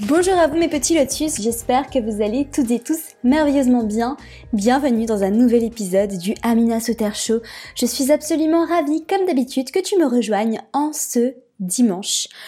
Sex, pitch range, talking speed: female, 215-285 Hz, 180 wpm